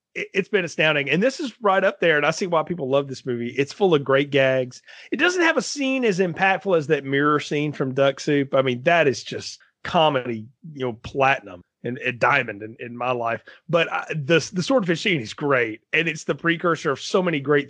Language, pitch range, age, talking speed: English, 135-180 Hz, 30-49, 230 wpm